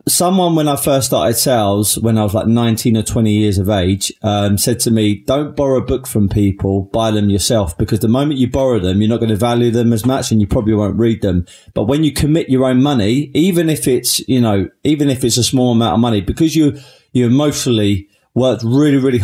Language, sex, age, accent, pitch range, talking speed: English, male, 20-39, British, 105-130 Hz, 235 wpm